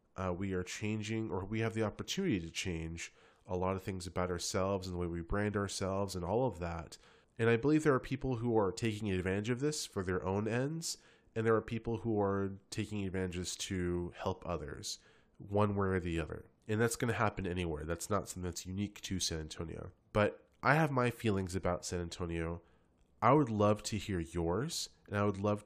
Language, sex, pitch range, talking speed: English, male, 90-110 Hz, 215 wpm